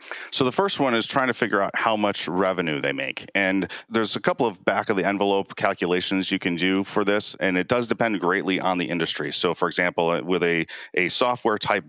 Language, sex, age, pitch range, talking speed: English, male, 40-59, 85-105 Hz, 205 wpm